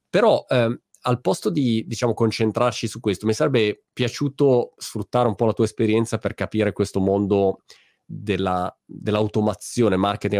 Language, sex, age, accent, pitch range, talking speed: Italian, male, 20-39, native, 95-115 Hz, 145 wpm